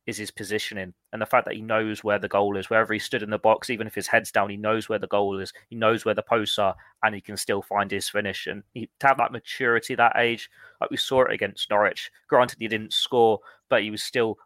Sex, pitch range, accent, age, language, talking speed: male, 100-120 Hz, British, 20-39, English, 270 wpm